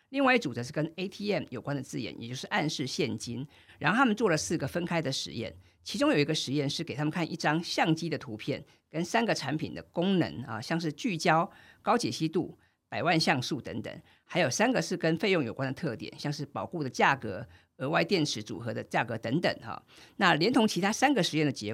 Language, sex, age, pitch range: Chinese, female, 50-69, 140-200 Hz